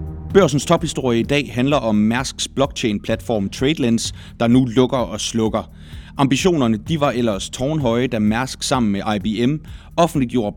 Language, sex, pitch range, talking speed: Danish, male, 105-135 Hz, 140 wpm